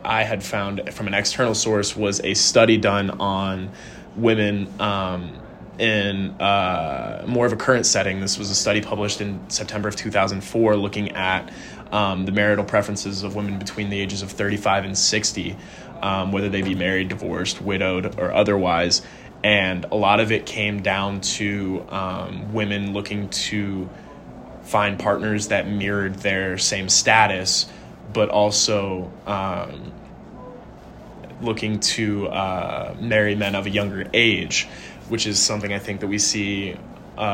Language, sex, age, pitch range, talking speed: English, male, 20-39, 95-105 Hz, 150 wpm